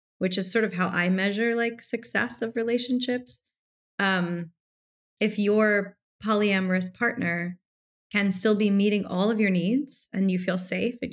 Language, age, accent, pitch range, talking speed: English, 20-39, American, 170-210 Hz, 155 wpm